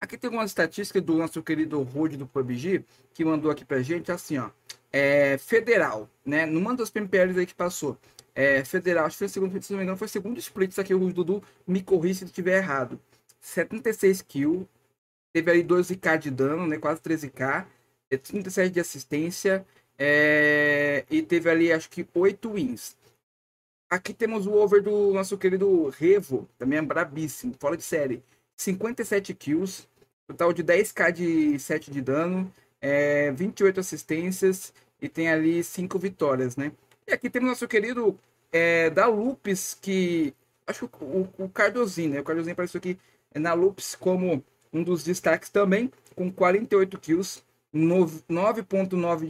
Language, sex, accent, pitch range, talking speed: Portuguese, male, Brazilian, 155-195 Hz, 165 wpm